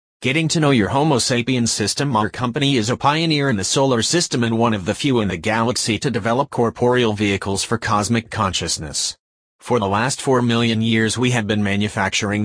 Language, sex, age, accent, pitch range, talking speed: English, male, 30-49, American, 105-125 Hz, 200 wpm